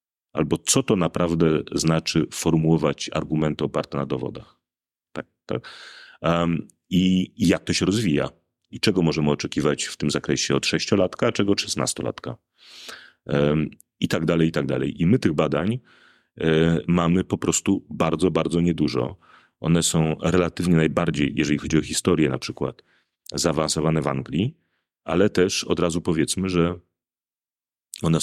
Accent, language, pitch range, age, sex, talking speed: native, Polish, 75-90 Hz, 40-59, male, 150 wpm